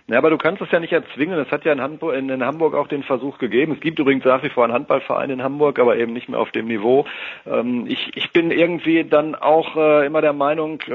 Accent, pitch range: German, 130-155 Hz